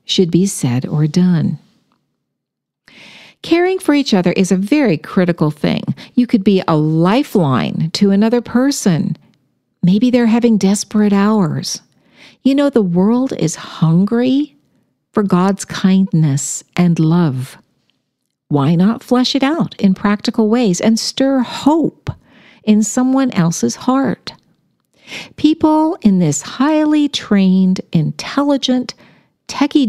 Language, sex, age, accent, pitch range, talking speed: English, female, 50-69, American, 175-250 Hz, 120 wpm